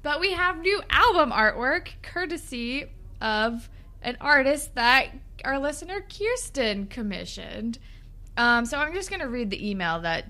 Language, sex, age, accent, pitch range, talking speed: English, female, 20-39, American, 195-255 Hz, 145 wpm